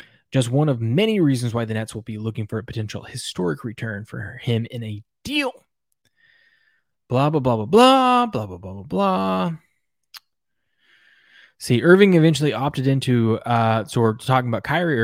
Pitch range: 110-145 Hz